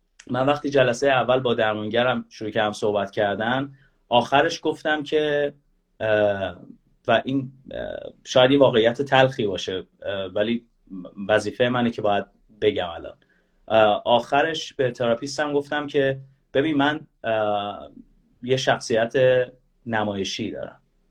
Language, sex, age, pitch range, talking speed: Persian, male, 30-49, 110-140 Hz, 110 wpm